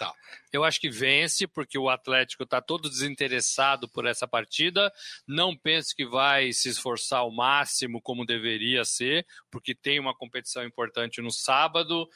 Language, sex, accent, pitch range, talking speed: Portuguese, male, Brazilian, 130-170 Hz, 155 wpm